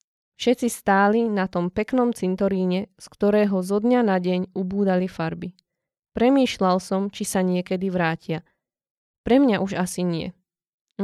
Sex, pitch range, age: female, 180-205 Hz, 20-39